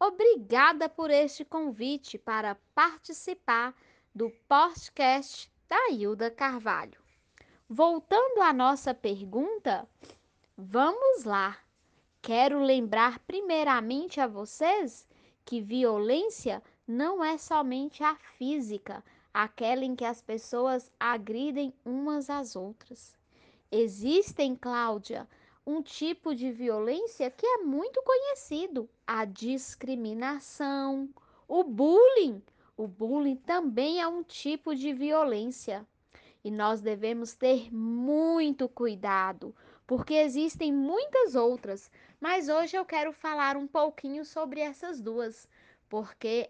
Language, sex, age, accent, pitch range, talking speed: Portuguese, female, 10-29, Brazilian, 230-305 Hz, 105 wpm